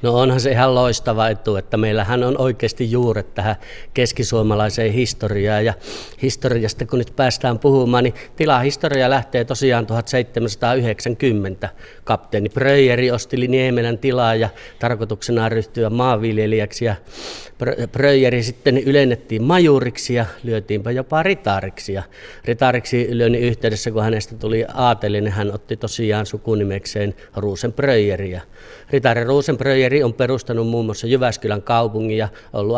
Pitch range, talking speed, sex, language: 110-125 Hz, 120 wpm, male, Finnish